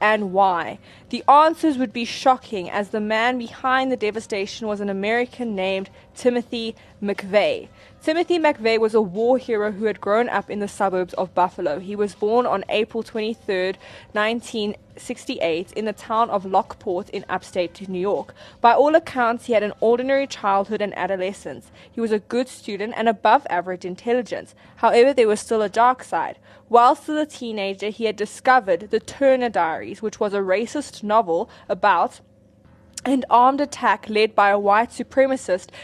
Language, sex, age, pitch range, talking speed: English, female, 20-39, 200-245 Hz, 165 wpm